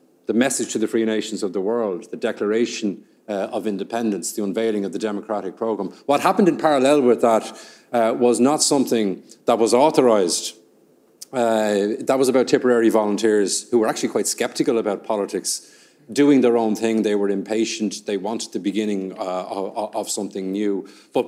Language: English